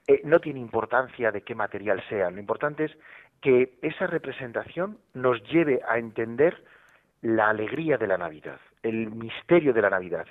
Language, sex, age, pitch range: Spanish, male, 40-59, 115-155 Hz